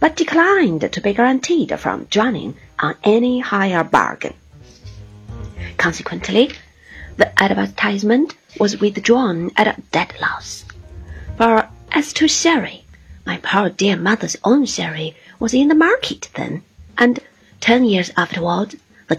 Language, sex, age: Chinese, female, 40-59